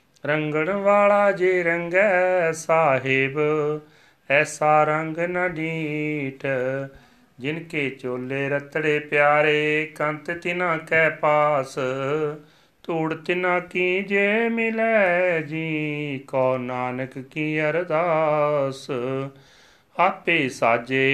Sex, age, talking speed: male, 40-59, 80 wpm